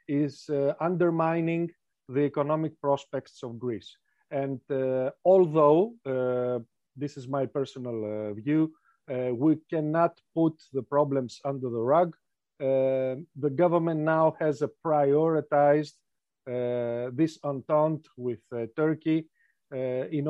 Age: 40-59